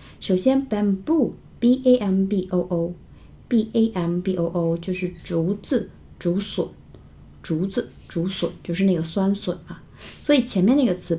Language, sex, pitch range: Chinese, female, 170-225 Hz